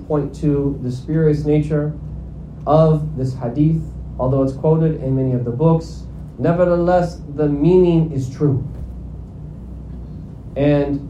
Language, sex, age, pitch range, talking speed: English, male, 30-49, 140-175 Hz, 120 wpm